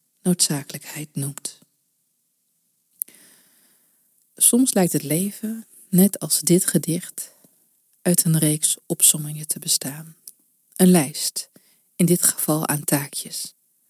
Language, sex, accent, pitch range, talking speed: Dutch, female, Dutch, 150-185 Hz, 100 wpm